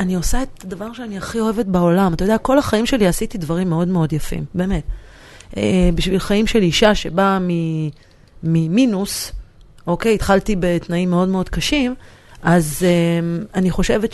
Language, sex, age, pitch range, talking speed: Hebrew, female, 30-49, 165-225 Hz, 155 wpm